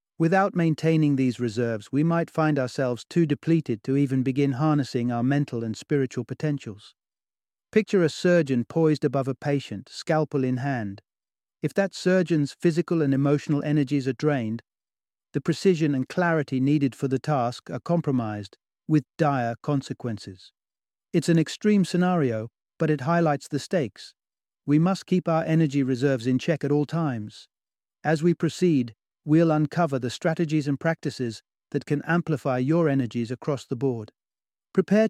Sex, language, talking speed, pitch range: male, English, 150 wpm, 125-165 Hz